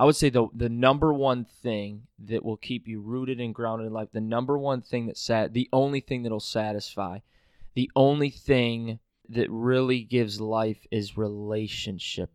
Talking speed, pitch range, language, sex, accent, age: 185 wpm, 110-125 Hz, English, male, American, 20-39